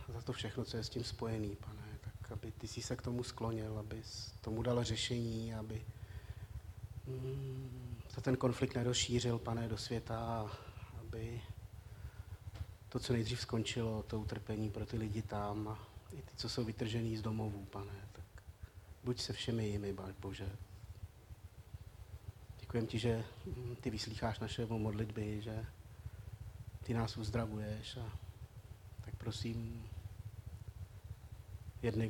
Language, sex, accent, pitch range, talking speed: Czech, male, native, 100-115 Hz, 135 wpm